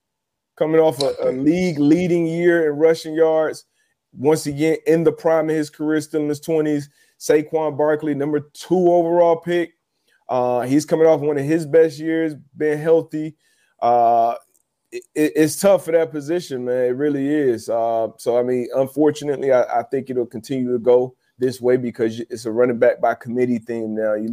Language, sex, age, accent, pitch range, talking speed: English, male, 30-49, American, 120-150 Hz, 185 wpm